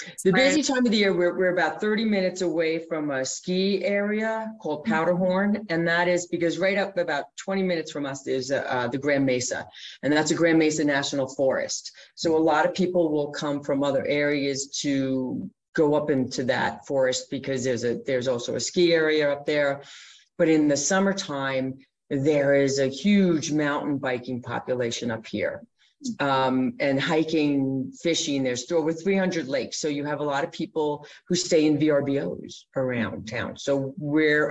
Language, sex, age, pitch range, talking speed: English, female, 30-49, 135-170 Hz, 180 wpm